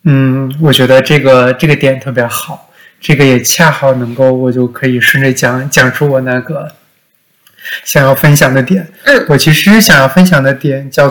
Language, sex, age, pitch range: Chinese, male, 20-39, 130-165 Hz